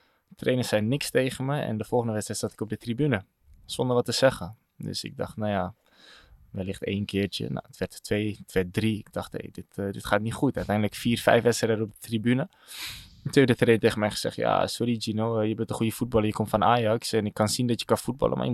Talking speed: 255 wpm